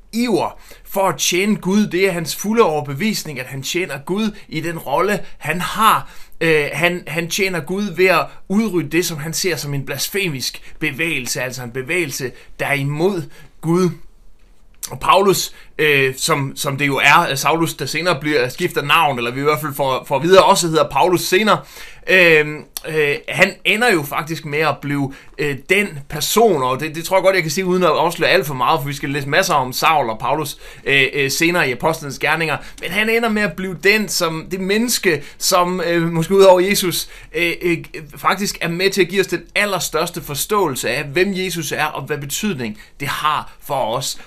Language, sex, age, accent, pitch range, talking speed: Danish, male, 30-49, native, 145-185 Hz, 200 wpm